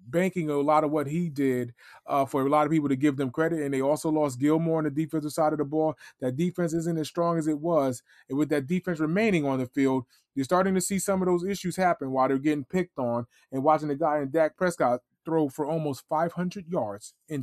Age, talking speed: 20-39, 250 wpm